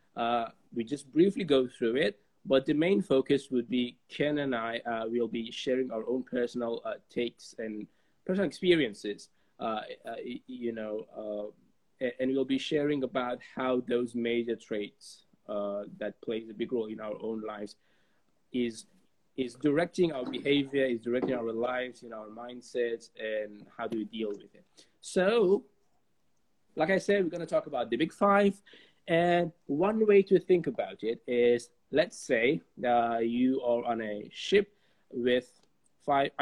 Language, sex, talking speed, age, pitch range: English, male, 170 wpm, 20-39, 115-155 Hz